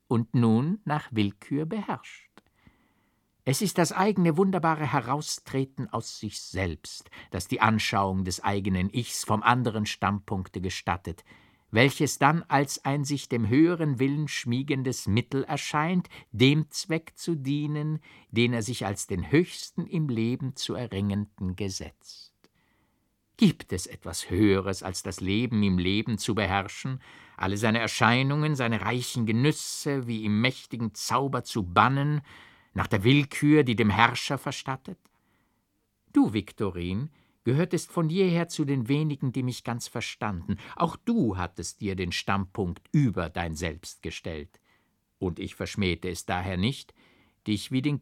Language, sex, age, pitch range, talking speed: German, male, 50-69, 100-145 Hz, 140 wpm